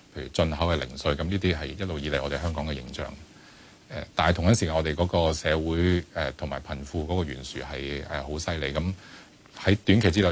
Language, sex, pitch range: Chinese, male, 75-90 Hz